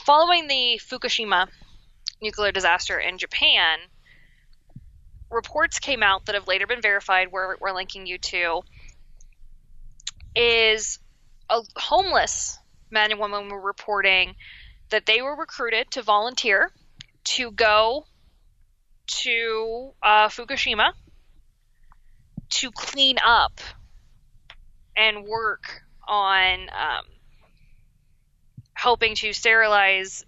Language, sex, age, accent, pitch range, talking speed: English, female, 20-39, American, 195-230 Hz, 95 wpm